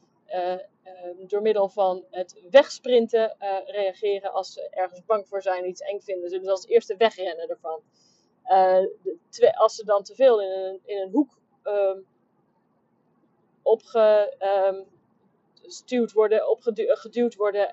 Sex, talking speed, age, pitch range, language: female, 140 wpm, 30-49, 190-240 Hz, Dutch